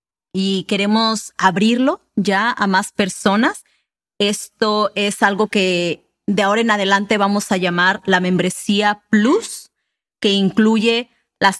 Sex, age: female, 30-49